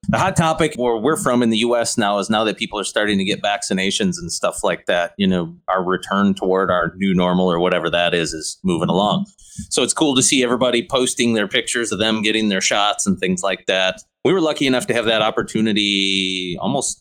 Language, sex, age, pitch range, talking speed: English, male, 30-49, 95-125 Hz, 230 wpm